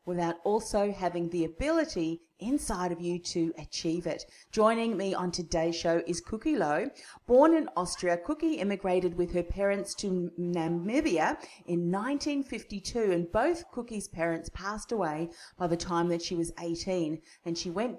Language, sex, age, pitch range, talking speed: English, female, 30-49, 165-220 Hz, 155 wpm